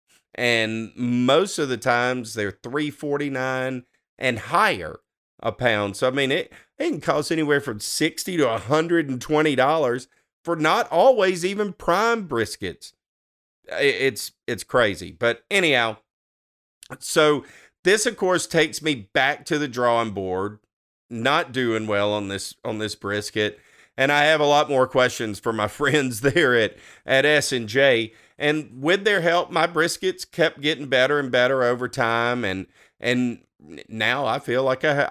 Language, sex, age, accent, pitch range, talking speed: English, male, 40-59, American, 115-150 Hz, 160 wpm